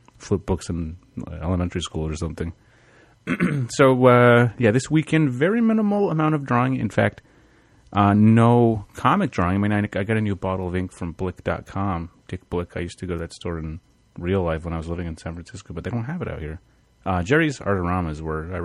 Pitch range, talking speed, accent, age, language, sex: 90-120 Hz, 215 wpm, American, 30-49, English, male